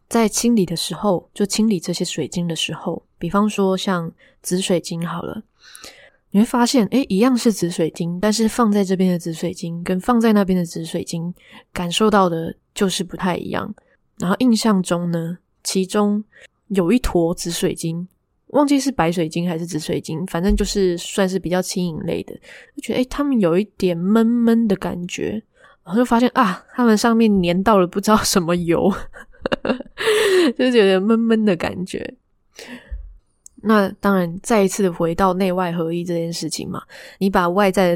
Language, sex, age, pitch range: Chinese, female, 20-39, 175-215 Hz